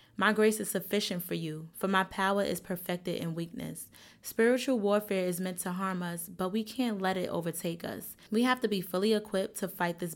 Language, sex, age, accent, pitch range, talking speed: English, female, 20-39, American, 170-205 Hz, 215 wpm